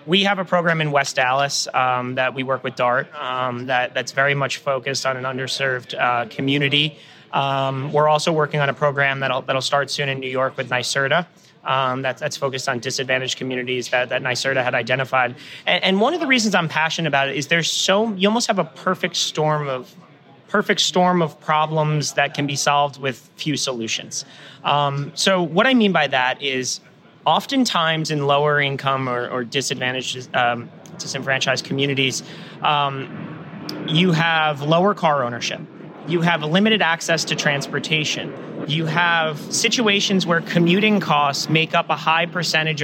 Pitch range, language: 135-170 Hz, English